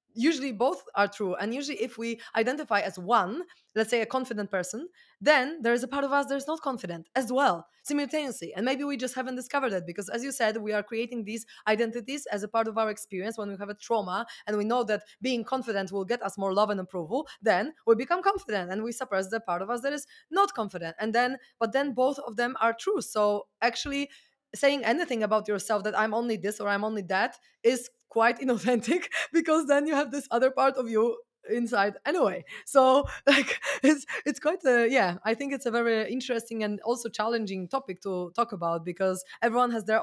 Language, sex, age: English, female, 20-39